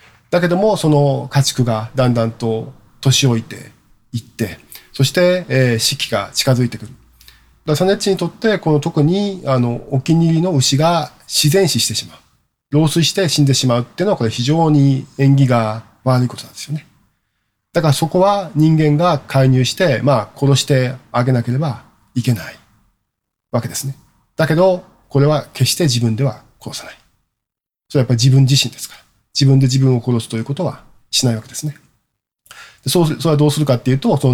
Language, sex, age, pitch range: Japanese, male, 40-59, 115-145 Hz